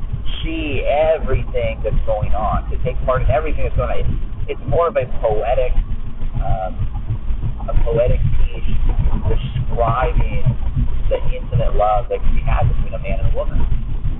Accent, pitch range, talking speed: American, 110-125 Hz, 150 wpm